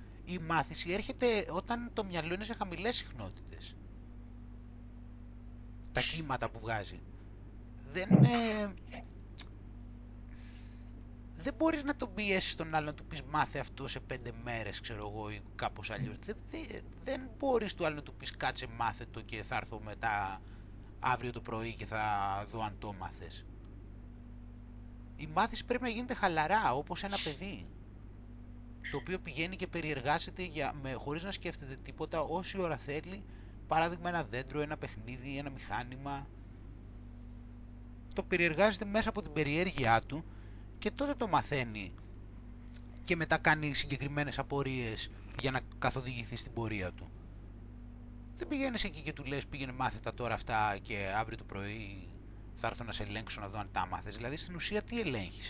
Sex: male